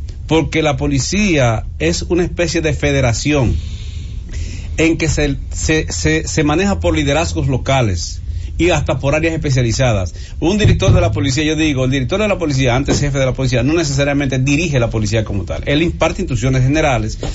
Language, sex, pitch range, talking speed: English, male, 110-155 Hz, 175 wpm